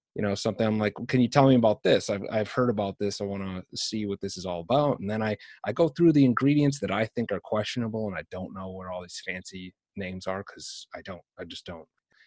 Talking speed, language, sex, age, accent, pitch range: 270 wpm, English, male, 30-49, American, 100-125 Hz